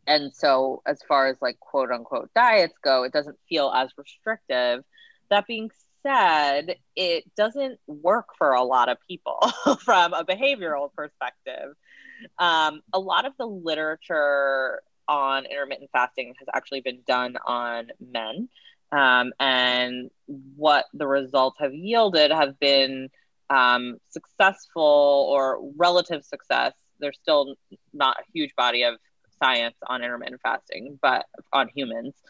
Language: English